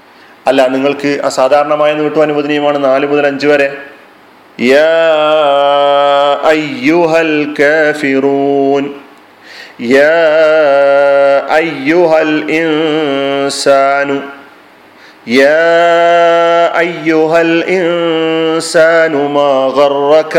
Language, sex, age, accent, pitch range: Malayalam, male, 40-59, native, 140-160 Hz